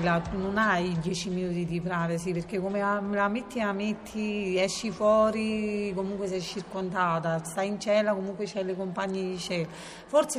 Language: Italian